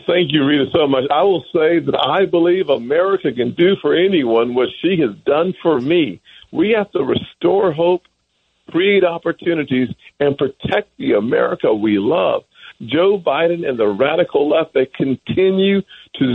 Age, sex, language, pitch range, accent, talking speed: 50-69, male, English, 135-180 Hz, American, 160 wpm